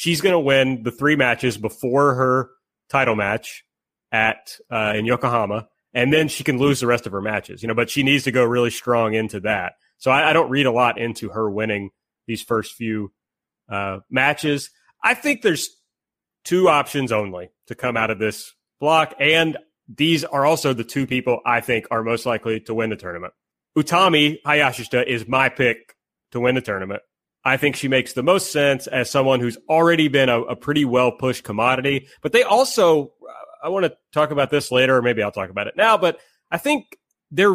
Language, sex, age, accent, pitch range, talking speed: English, male, 30-49, American, 120-155 Hz, 205 wpm